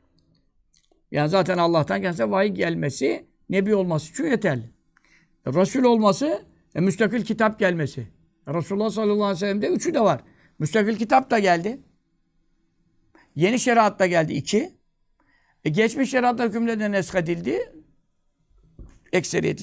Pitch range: 160-220 Hz